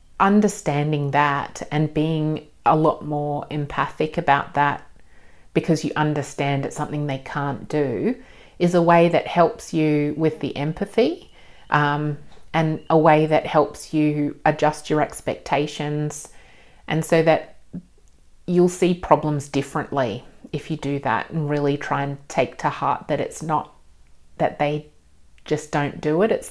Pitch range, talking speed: 140-165 Hz, 145 wpm